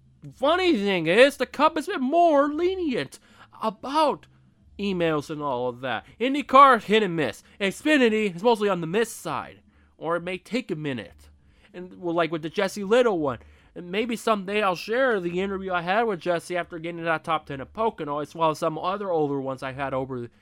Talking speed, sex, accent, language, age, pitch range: 205 wpm, male, American, English, 20-39, 130-185 Hz